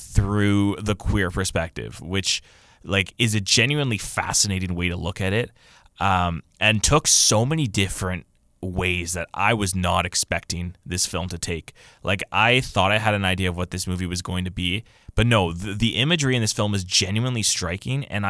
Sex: male